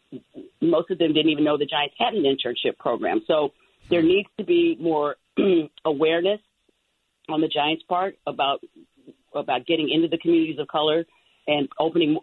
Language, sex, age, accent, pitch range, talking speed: English, female, 40-59, American, 140-185 Hz, 160 wpm